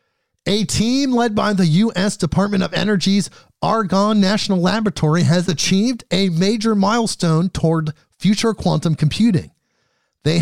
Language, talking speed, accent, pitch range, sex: English, 125 wpm, American, 140-190 Hz, male